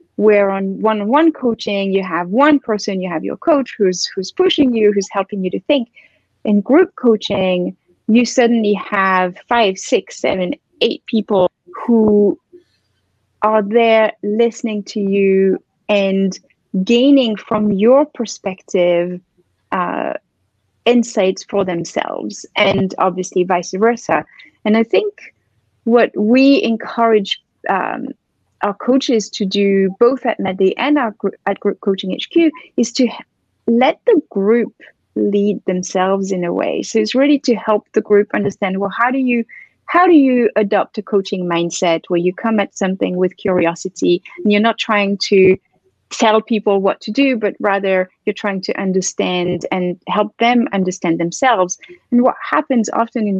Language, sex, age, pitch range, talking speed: English, female, 30-49, 190-235 Hz, 150 wpm